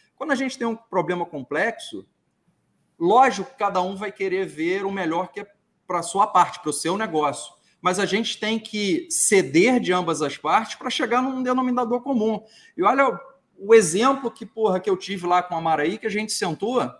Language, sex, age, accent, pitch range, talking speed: Portuguese, male, 40-59, Brazilian, 175-230 Hz, 205 wpm